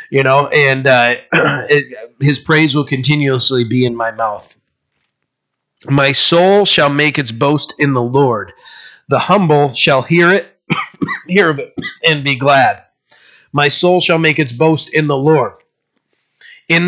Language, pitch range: English, 145-180 Hz